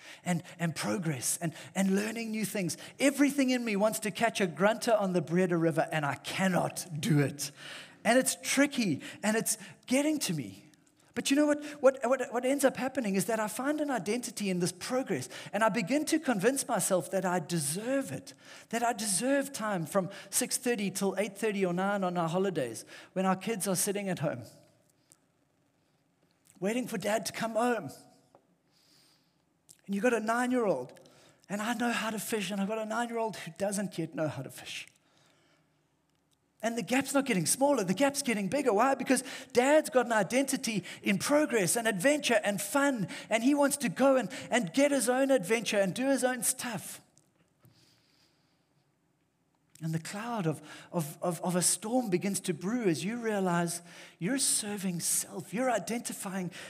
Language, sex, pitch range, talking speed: English, male, 175-245 Hz, 180 wpm